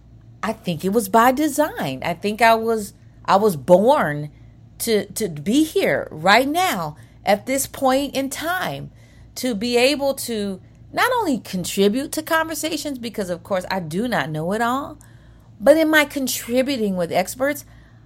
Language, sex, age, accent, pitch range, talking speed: English, female, 40-59, American, 150-250 Hz, 160 wpm